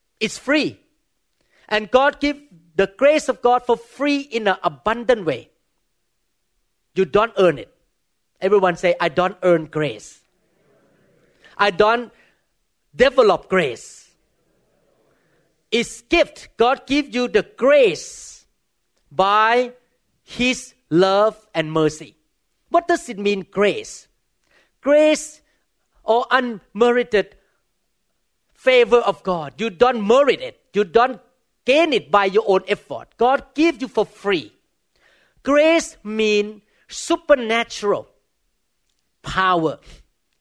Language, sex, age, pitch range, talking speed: English, male, 40-59, 180-255 Hz, 110 wpm